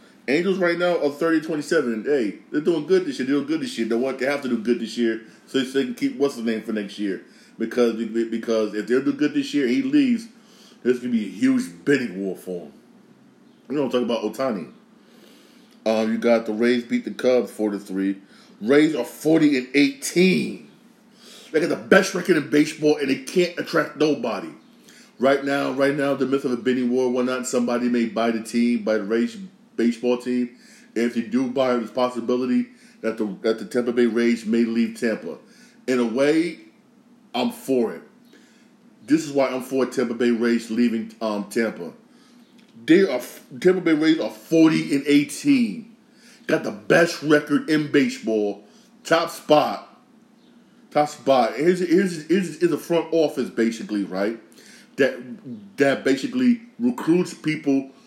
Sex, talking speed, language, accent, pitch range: male, 185 wpm, English, American, 120-195 Hz